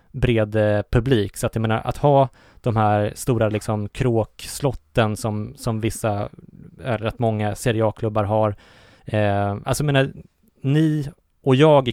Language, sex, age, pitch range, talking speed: Swedish, male, 20-39, 110-130 Hz, 135 wpm